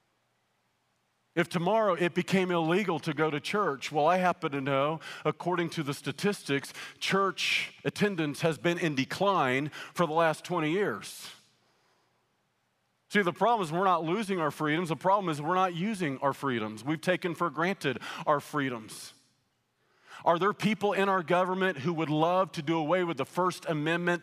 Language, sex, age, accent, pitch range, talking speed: English, male, 40-59, American, 150-180 Hz, 170 wpm